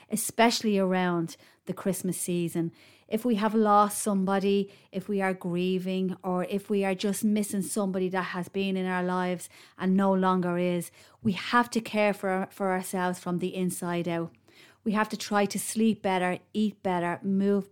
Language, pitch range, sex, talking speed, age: English, 185-210 Hz, female, 175 wpm, 30-49